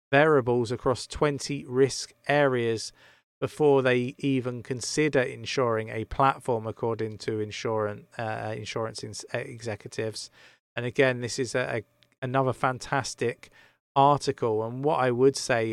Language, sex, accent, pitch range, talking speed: English, male, British, 110-130 Hz, 125 wpm